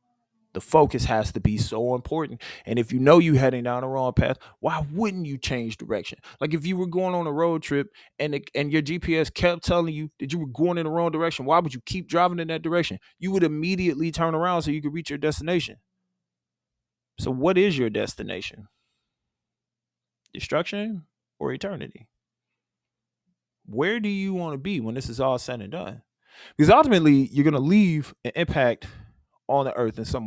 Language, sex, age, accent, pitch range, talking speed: English, male, 20-39, American, 110-165 Hz, 200 wpm